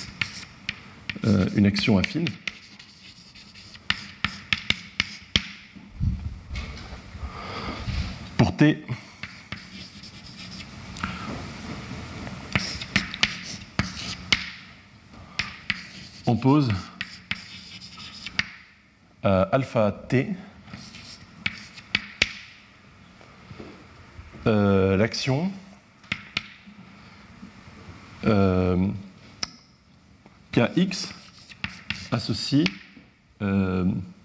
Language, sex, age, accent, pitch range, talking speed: French, male, 50-69, French, 100-140 Hz, 30 wpm